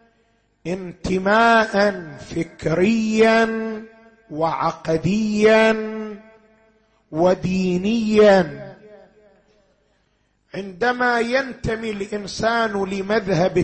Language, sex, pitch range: Arabic, male, 195-235 Hz